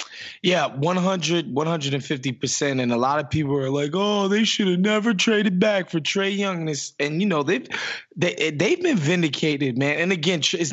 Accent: American